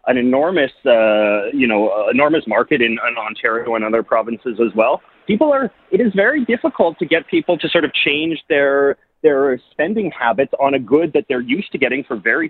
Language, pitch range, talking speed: English, 125-175 Hz, 200 wpm